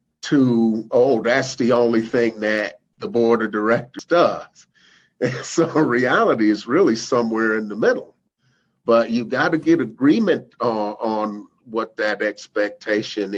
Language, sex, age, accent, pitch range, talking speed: English, male, 50-69, American, 105-120 Hz, 145 wpm